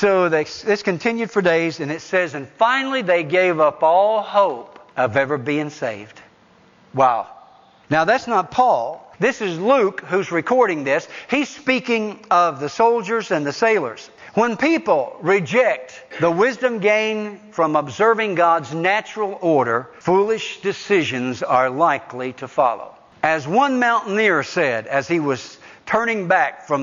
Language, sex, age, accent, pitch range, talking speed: English, male, 60-79, American, 145-210 Hz, 145 wpm